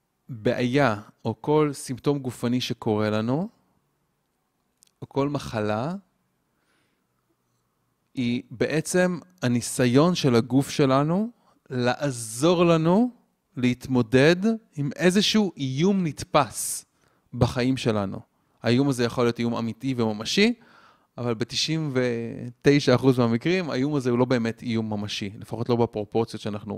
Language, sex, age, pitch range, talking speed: Hebrew, male, 30-49, 115-150 Hz, 105 wpm